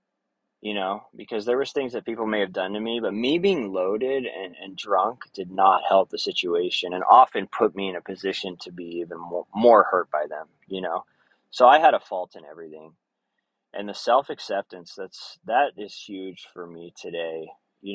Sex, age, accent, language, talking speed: male, 20-39, American, English, 200 wpm